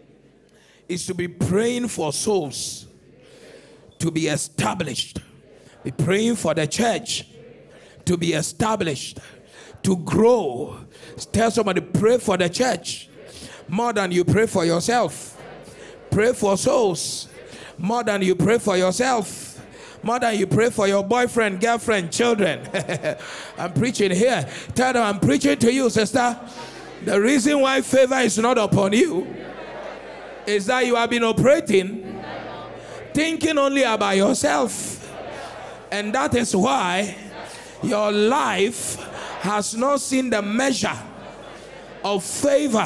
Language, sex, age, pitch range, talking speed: English, male, 50-69, 180-240 Hz, 125 wpm